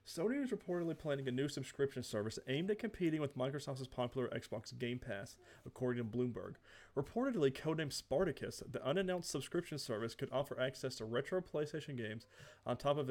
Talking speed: 170 wpm